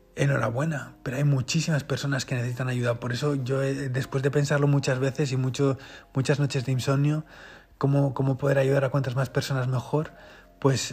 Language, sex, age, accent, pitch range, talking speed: Spanish, male, 20-39, Spanish, 130-145 Hz, 175 wpm